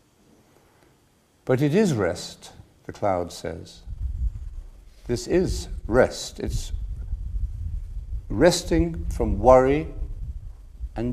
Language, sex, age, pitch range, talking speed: English, male, 50-69, 85-130 Hz, 80 wpm